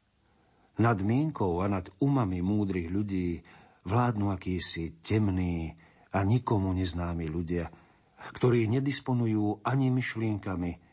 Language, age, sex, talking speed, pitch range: Slovak, 50-69, male, 100 wpm, 85-110 Hz